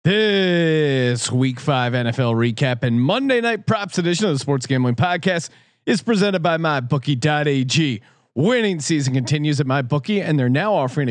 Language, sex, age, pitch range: English, male, 40-59, 130-175 Hz